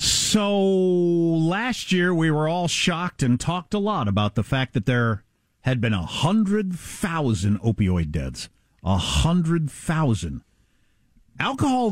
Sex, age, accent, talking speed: male, 50-69, American, 115 wpm